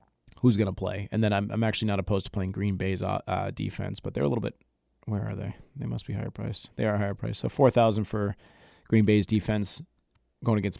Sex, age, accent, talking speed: male, 30-49, American, 240 wpm